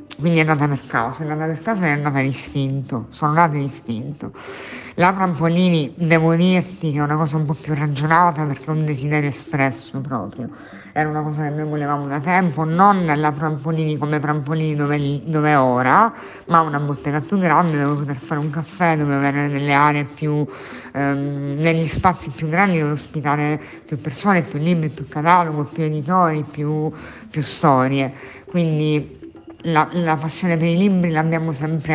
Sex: female